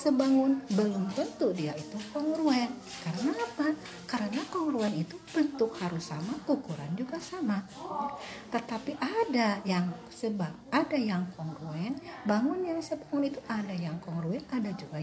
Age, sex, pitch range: 50-69, female, 180-275 Hz